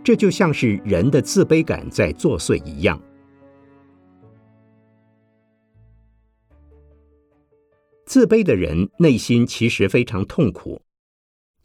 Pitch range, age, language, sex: 90-140 Hz, 50-69, Chinese, male